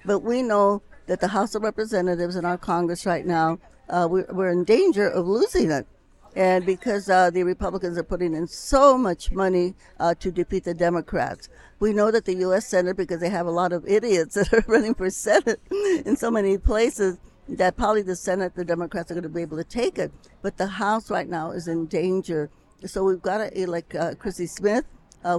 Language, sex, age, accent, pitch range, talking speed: English, female, 60-79, American, 175-210 Hz, 215 wpm